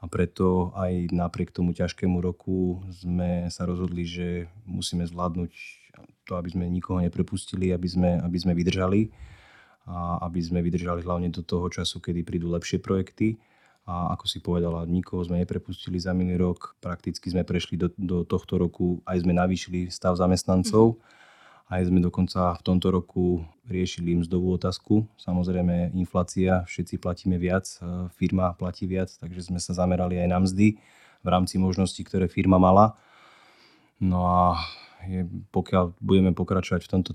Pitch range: 90-95 Hz